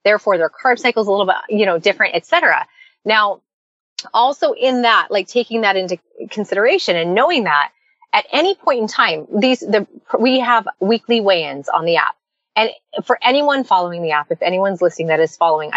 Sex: female